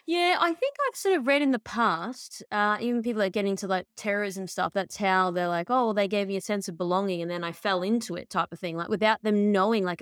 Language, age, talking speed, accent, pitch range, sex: English, 20-39, 275 wpm, Australian, 190-230 Hz, female